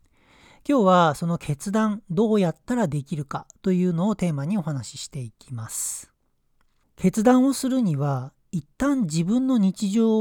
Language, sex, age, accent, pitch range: Japanese, male, 40-59, native, 145-220 Hz